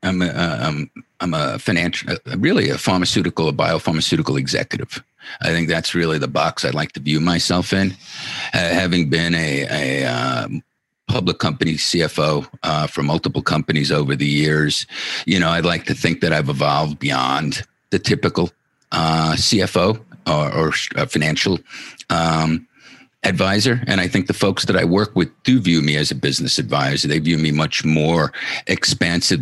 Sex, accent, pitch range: male, American, 80-100 Hz